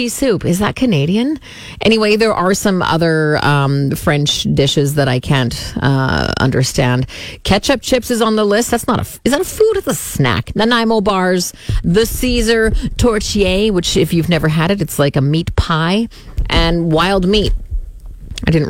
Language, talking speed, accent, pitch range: English, 175 wpm, American, 145-215 Hz